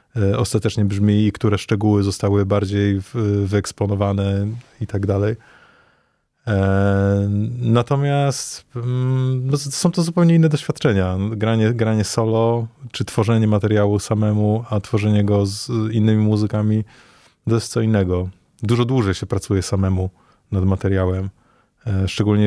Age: 20-39